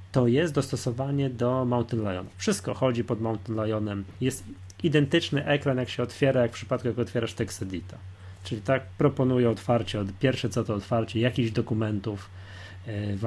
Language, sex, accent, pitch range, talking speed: Polish, male, native, 105-135 Hz, 160 wpm